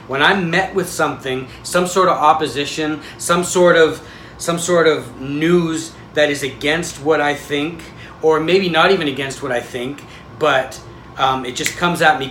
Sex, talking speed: male, 180 wpm